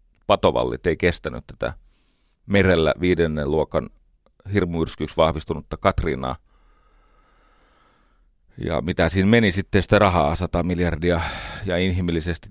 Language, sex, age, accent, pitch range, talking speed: Finnish, male, 30-49, native, 80-105 Hz, 100 wpm